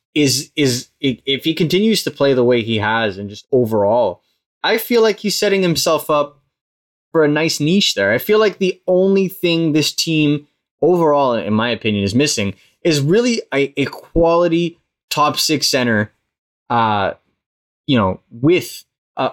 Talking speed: 165 wpm